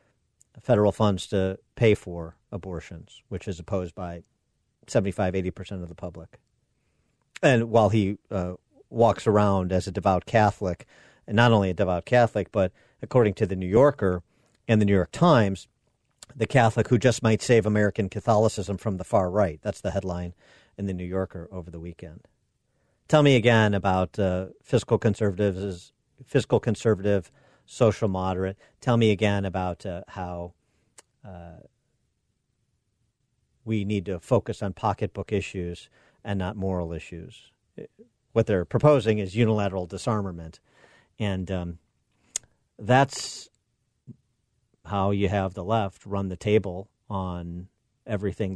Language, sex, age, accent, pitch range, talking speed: English, male, 50-69, American, 95-110 Hz, 140 wpm